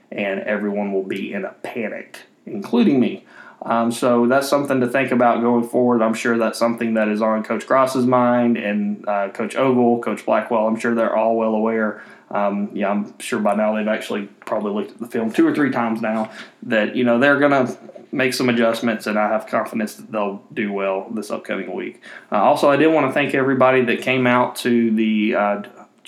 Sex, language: male, English